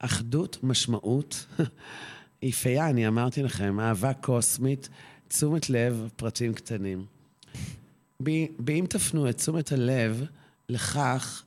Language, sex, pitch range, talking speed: Hebrew, male, 120-150 Hz, 105 wpm